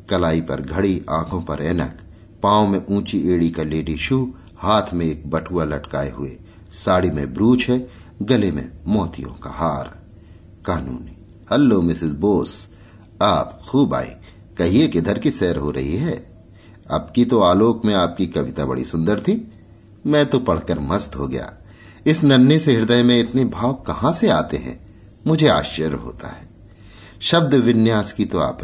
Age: 50-69